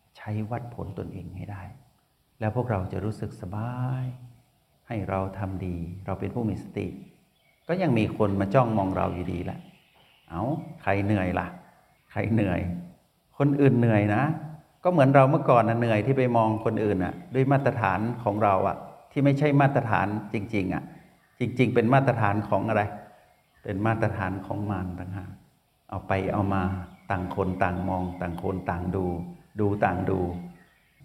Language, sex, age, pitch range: Thai, male, 60-79, 95-120 Hz